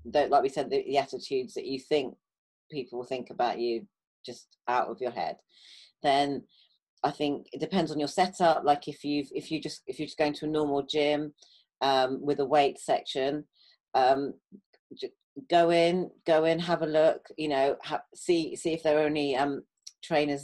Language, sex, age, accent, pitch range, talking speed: English, female, 40-59, British, 135-160 Hz, 195 wpm